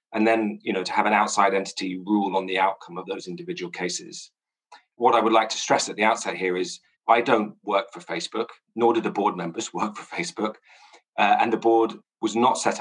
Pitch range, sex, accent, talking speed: 95-115 Hz, male, British, 225 wpm